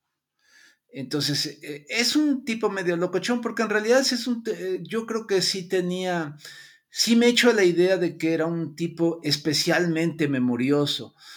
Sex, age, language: male, 50-69, Spanish